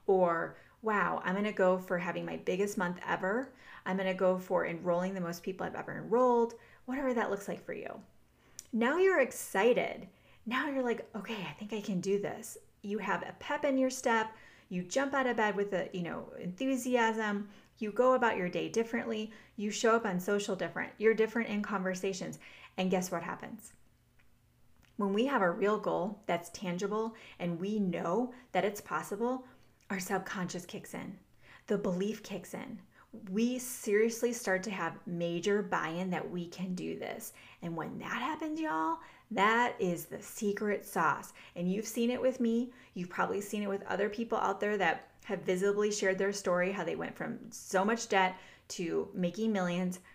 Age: 30-49